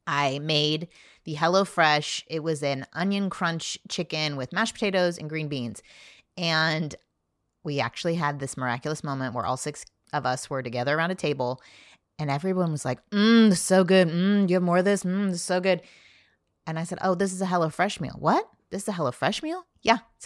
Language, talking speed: English, 200 wpm